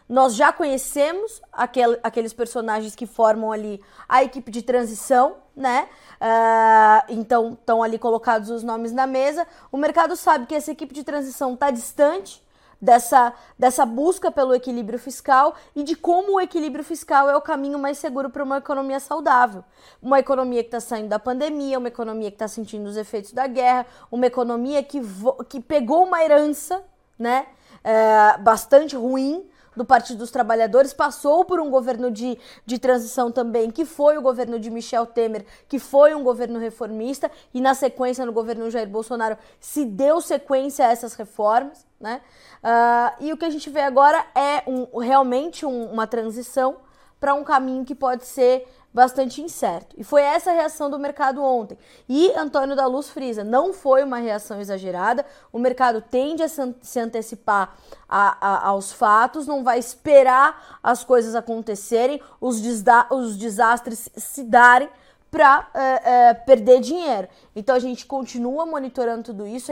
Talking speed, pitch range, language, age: 160 wpm, 235-285 Hz, Portuguese, 20-39